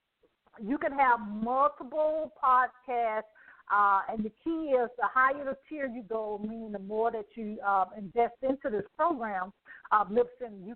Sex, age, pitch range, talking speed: female, 50-69, 225-305 Hz, 155 wpm